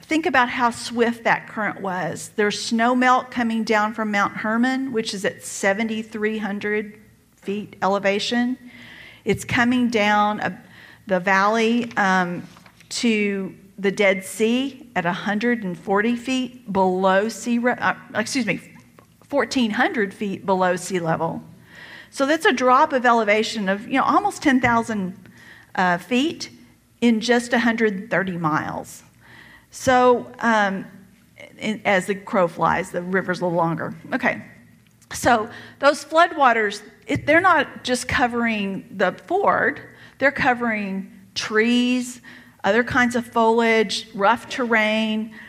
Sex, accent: female, American